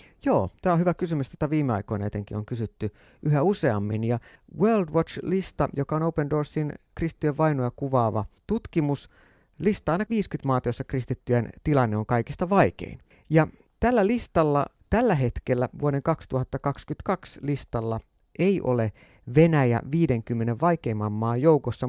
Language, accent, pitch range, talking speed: Finnish, native, 115-155 Hz, 135 wpm